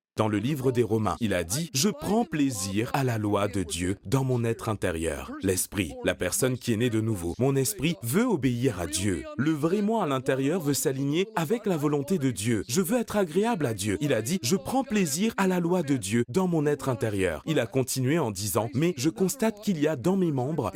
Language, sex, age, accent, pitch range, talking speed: French, male, 30-49, French, 115-190 Hz, 235 wpm